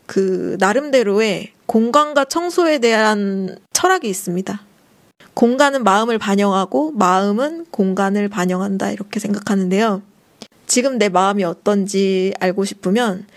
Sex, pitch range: female, 190-230 Hz